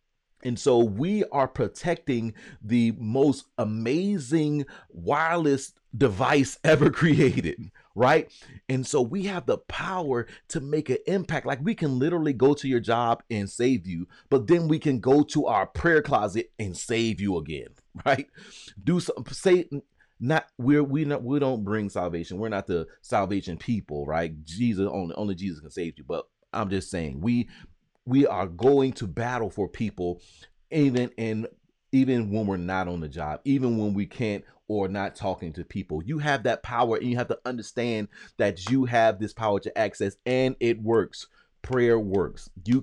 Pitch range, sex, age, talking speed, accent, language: 105-145 Hz, male, 30-49, 175 wpm, American, English